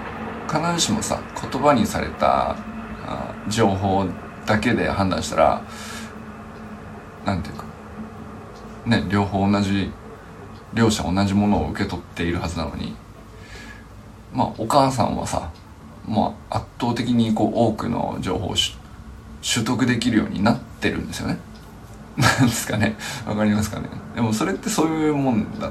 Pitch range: 100-120 Hz